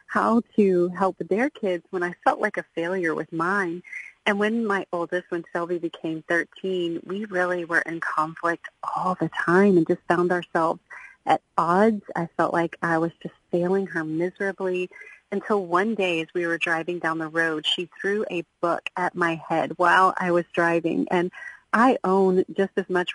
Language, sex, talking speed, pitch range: English, female, 185 wpm, 170-195 Hz